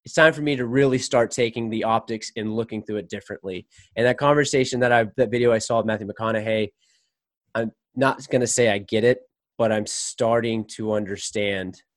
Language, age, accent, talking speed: English, 20-39, American, 200 wpm